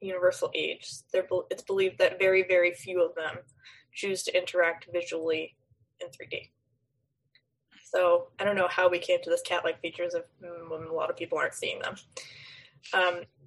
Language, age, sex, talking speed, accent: English, 20-39, female, 170 wpm, American